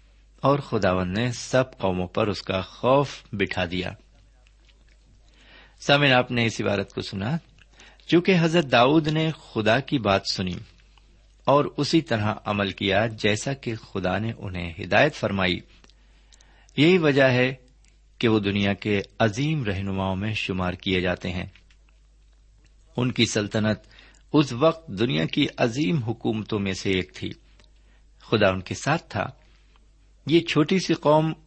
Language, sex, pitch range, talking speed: Urdu, male, 100-135 Hz, 140 wpm